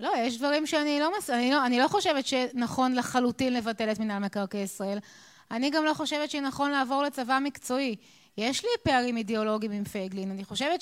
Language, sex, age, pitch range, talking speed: Hebrew, female, 20-39, 240-310 Hz, 190 wpm